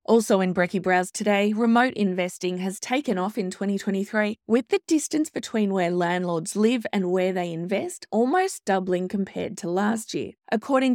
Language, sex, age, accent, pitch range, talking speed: English, female, 20-39, Australian, 185-240 Hz, 165 wpm